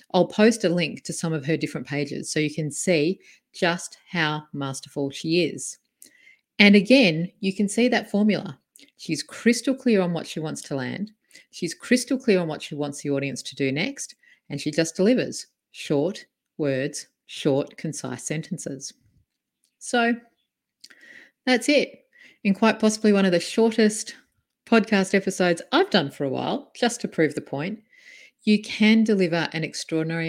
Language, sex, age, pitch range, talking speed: English, female, 40-59, 155-235 Hz, 165 wpm